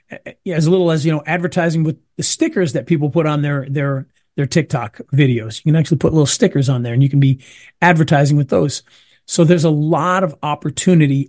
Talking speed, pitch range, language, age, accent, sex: 205 wpm, 145-185 Hz, English, 40-59, American, male